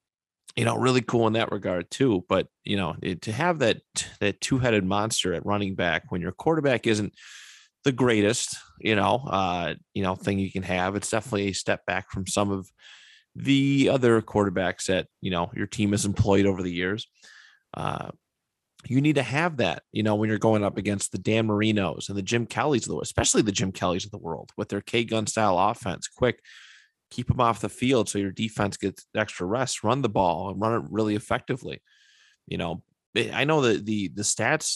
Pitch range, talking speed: 95-115 Hz, 205 wpm